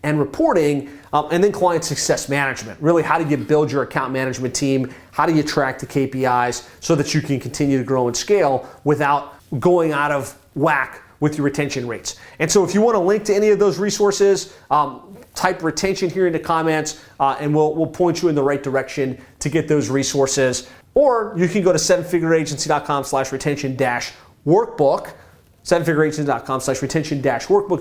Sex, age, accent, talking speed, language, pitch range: male, 30-49, American, 190 wpm, English, 140-180 Hz